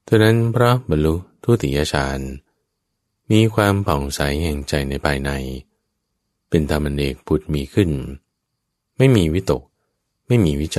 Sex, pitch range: male, 70-100 Hz